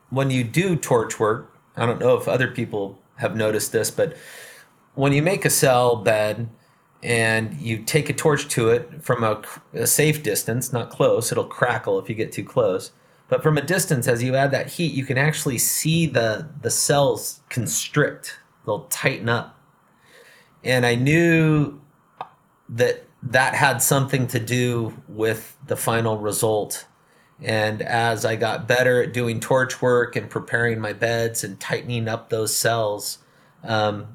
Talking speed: 165 wpm